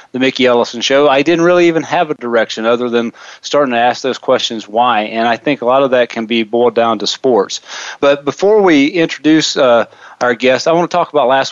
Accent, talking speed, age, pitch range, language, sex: American, 235 wpm, 40-59, 125-145 Hz, English, male